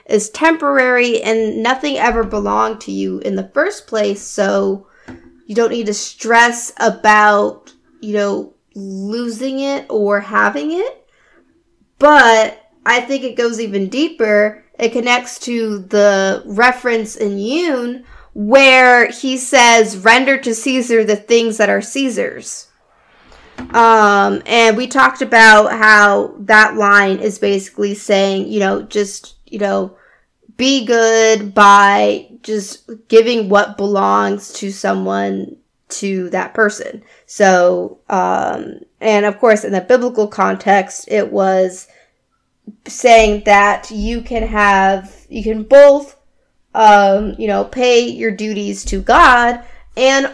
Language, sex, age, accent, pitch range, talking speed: English, female, 20-39, American, 200-245 Hz, 130 wpm